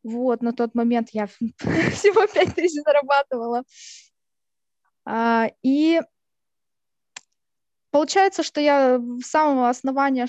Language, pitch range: Russian, 220-270 Hz